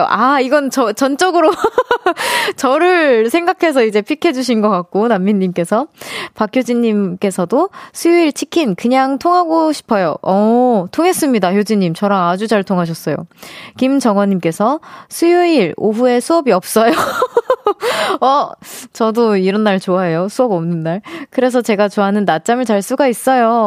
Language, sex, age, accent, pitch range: Korean, female, 20-39, native, 200-295 Hz